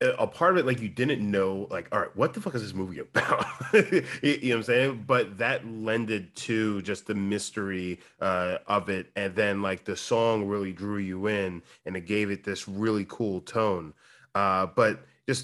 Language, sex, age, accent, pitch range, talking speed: English, male, 30-49, American, 100-130 Hz, 210 wpm